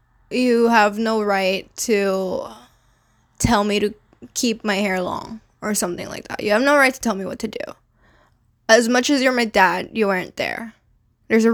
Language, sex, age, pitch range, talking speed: English, female, 10-29, 195-245 Hz, 190 wpm